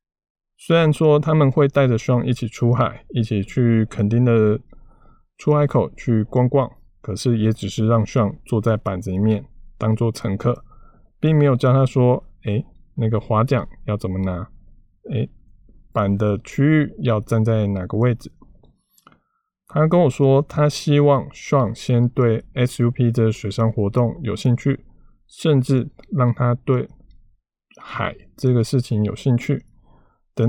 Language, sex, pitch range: Chinese, male, 110-145 Hz